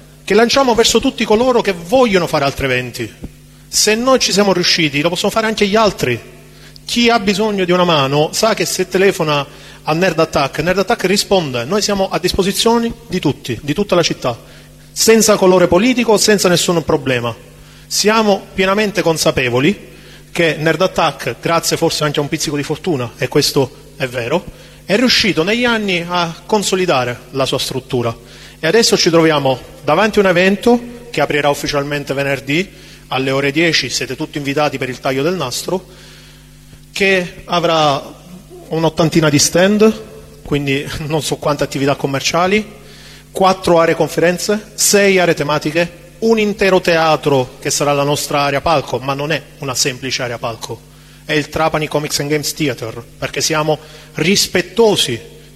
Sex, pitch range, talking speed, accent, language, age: male, 145-195 Hz, 160 wpm, native, Italian, 30-49